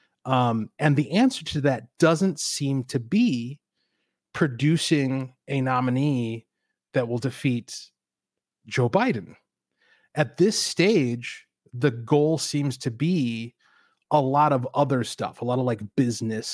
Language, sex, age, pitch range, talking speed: English, male, 30-49, 120-145 Hz, 130 wpm